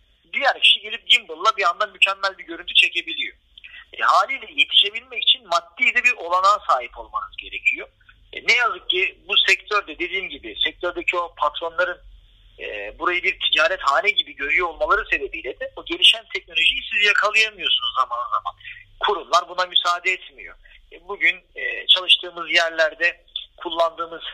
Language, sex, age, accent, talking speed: Turkish, male, 50-69, native, 145 wpm